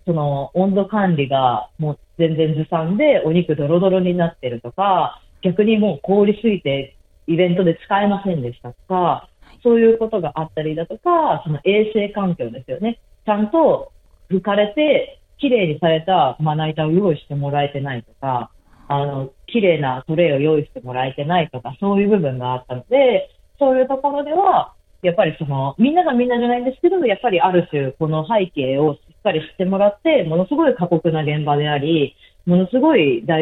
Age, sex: 40-59, female